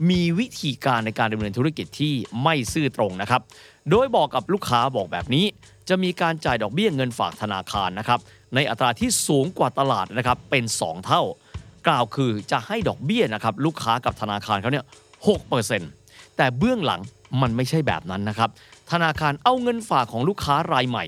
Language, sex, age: Thai, male, 30-49